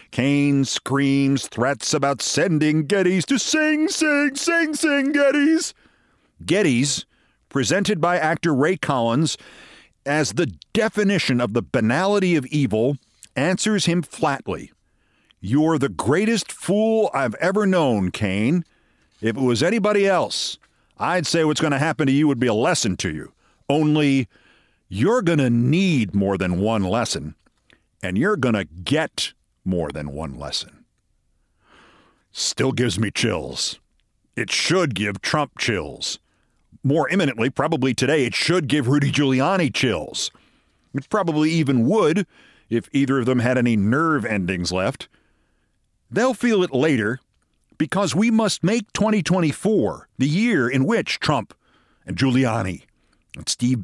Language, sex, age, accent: English, male, 50-69, American